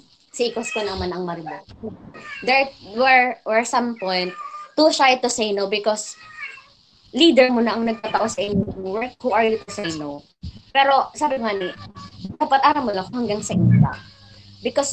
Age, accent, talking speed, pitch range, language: 20-39, native, 175 wpm, 180-250 Hz, Filipino